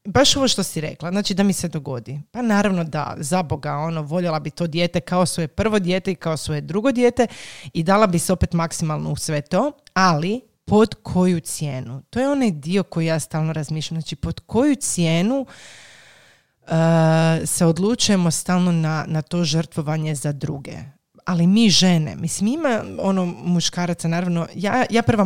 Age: 30-49